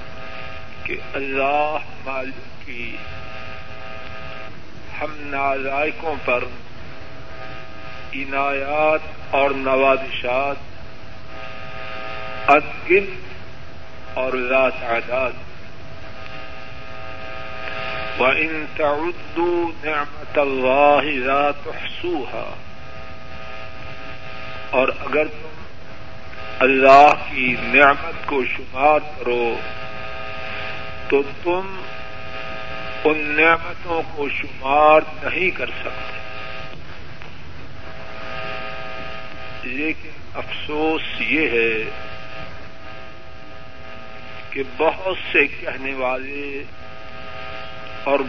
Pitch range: 120-150 Hz